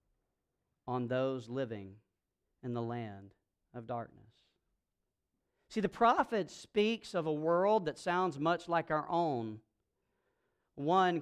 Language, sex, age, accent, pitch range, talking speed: English, male, 40-59, American, 145-220 Hz, 110 wpm